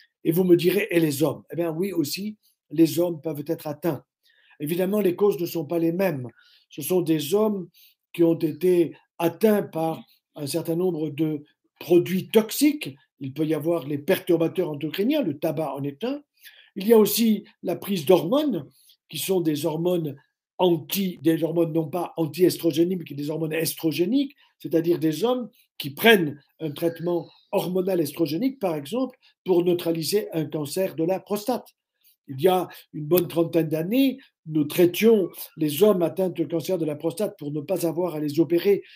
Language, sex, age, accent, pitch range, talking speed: French, male, 50-69, French, 160-190 Hz, 180 wpm